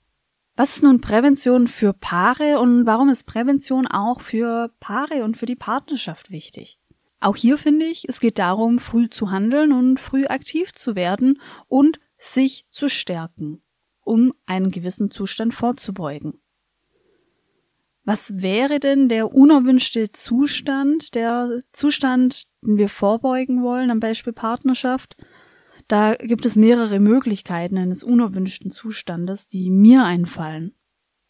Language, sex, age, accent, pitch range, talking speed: German, female, 20-39, German, 195-260 Hz, 130 wpm